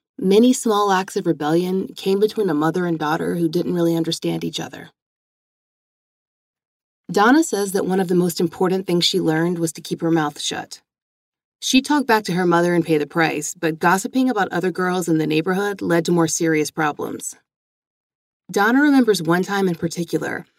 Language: English